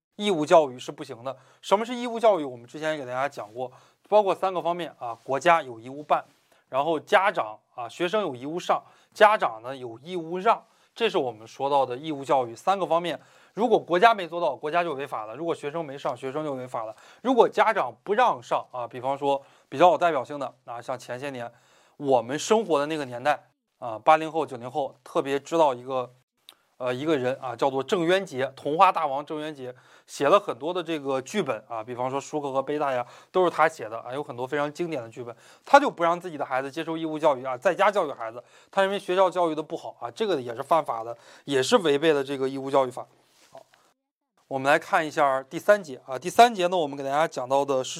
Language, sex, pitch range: Chinese, male, 130-175 Hz